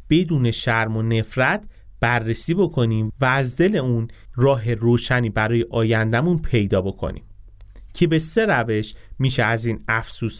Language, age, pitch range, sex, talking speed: Persian, 30-49, 110-145 Hz, male, 140 wpm